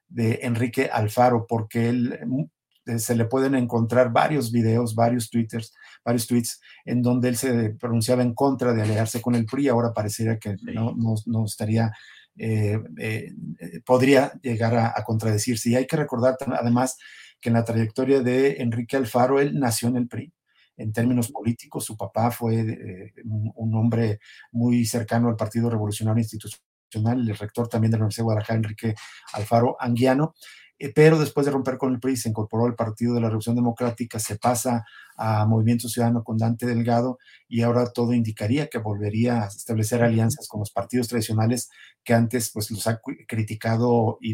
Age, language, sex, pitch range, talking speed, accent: 50-69, Spanish, male, 110-125 Hz, 175 wpm, Mexican